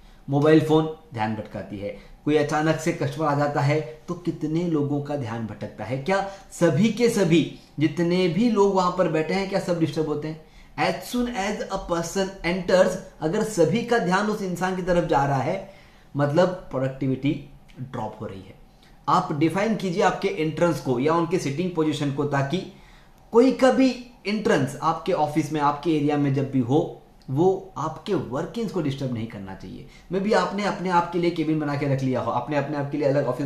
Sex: male